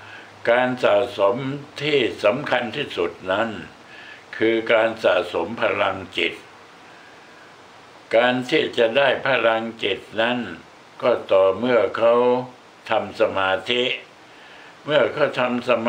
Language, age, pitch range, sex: Thai, 60-79, 115-130 Hz, male